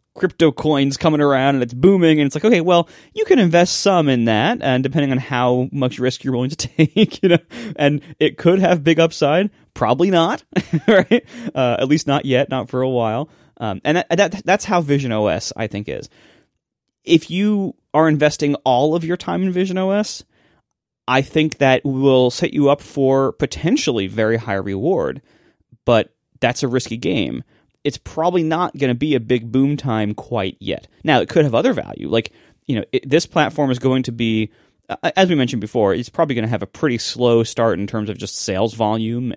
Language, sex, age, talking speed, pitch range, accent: English, male, 20-39, 205 wpm, 115-160 Hz, American